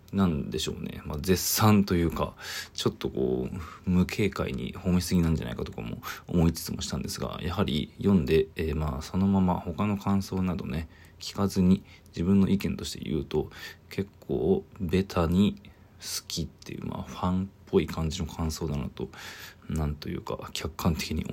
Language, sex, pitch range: Japanese, male, 80-95 Hz